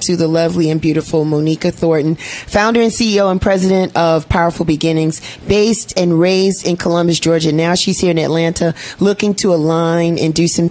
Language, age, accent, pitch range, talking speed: English, 30-49, American, 150-170 Hz, 180 wpm